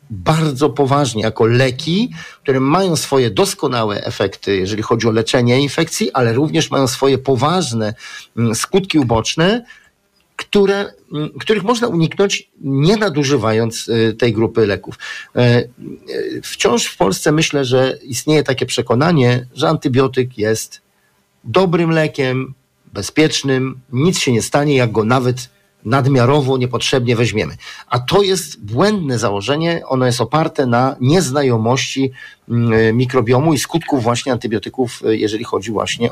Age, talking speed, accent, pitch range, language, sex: 50-69, 120 wpm, native, 120-160 Hz, Polish, male